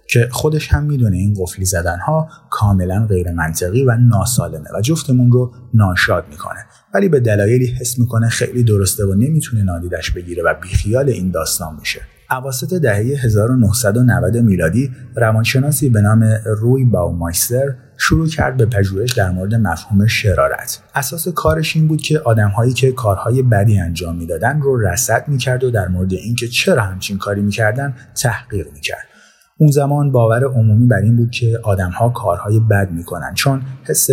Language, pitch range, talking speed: Persian, 100-125 Hz, 160 wpm